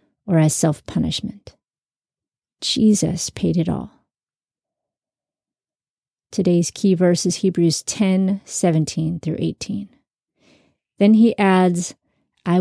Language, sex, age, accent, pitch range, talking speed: English, female, 30-49, American, 170-220 Hz, 95 wpm